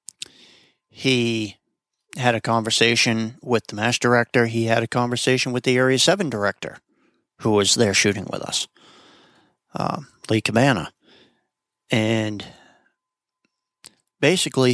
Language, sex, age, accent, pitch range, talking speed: English, male, 50-69, American, 110-140 Hz, 115 wpm